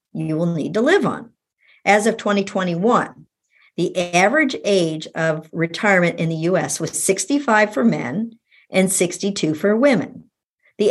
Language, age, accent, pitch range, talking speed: English, 50-69, American, 160-220 Hz, 145 wpm